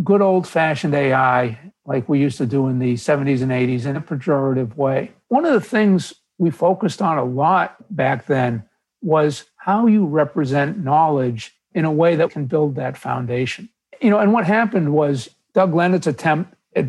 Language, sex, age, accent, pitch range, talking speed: English, male, 60-79, American, 140-185 Hz, 180 wpm